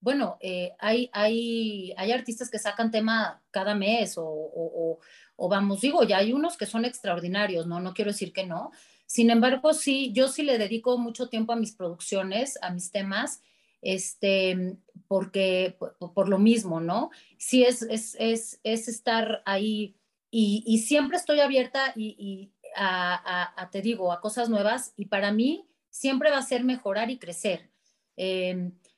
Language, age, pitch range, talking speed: Spanish, 30-49, 195-245 Hz, 175 wpm